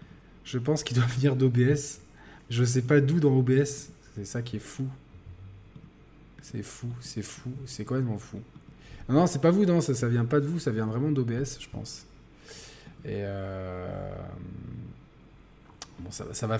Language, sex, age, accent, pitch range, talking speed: French, male, 20-39, French, 110-145 Hz, 175 wpm